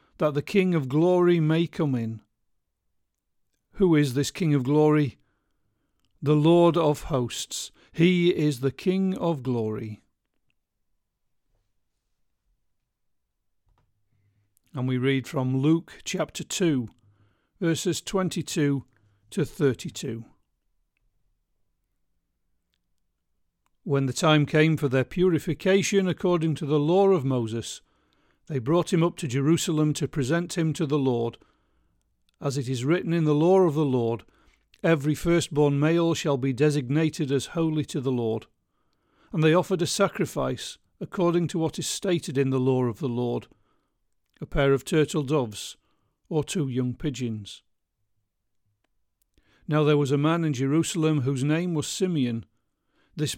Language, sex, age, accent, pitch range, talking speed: English, male, 50-69, British, 125-170 Hz, 135 wpm